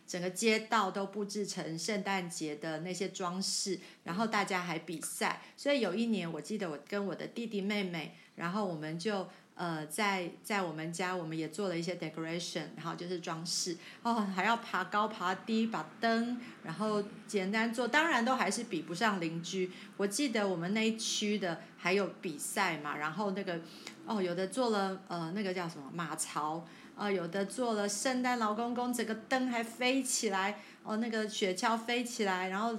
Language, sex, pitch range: Chinese, female, 175-220 Hz